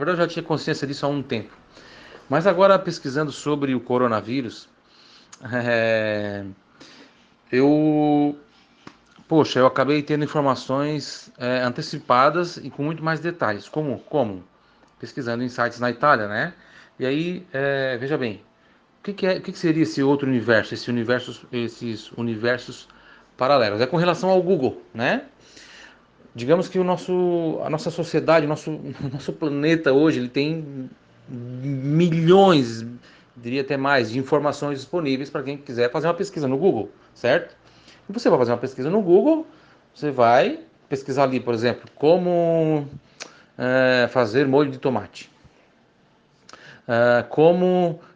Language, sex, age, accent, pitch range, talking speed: Italian, male, 40-59, Brazilian, 125-165 Hz, 140 wpm